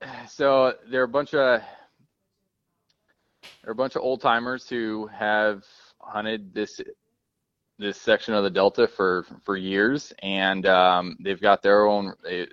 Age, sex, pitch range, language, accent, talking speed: 20-39, male, 100-125 Hz, English, American, 150 wpm